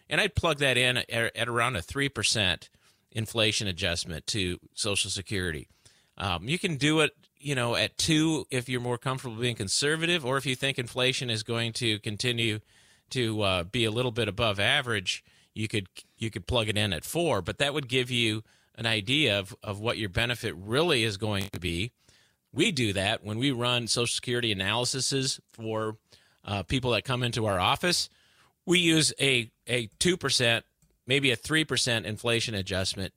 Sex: male